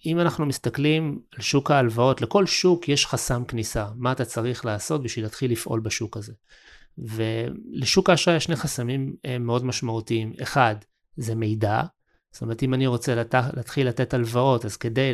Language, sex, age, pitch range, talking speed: Hebrew, male, 30-49, 115-140 Hz, 165 wpm